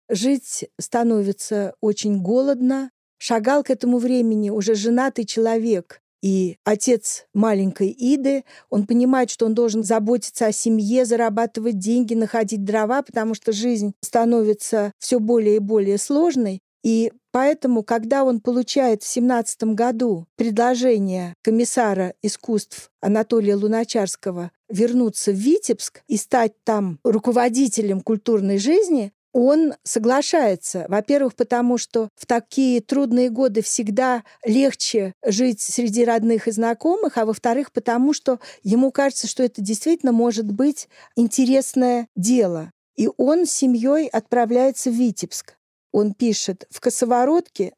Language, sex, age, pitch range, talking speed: Russian, female, 50-69, 215-255 Hz, 125 wpm